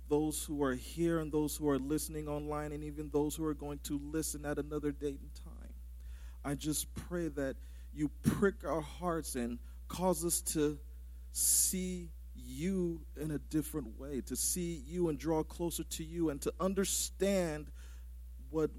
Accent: American